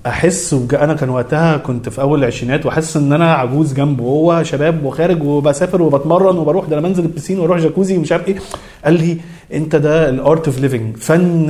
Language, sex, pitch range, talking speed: Arabic, male, 135-175 Hz, 165 wpm